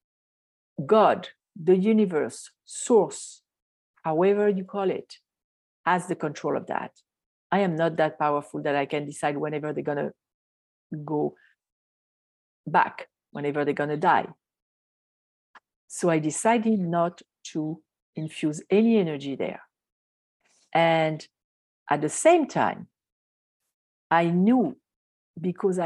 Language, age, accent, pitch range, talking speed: English, 50-69, French, 145-185 Hz, 115 wpm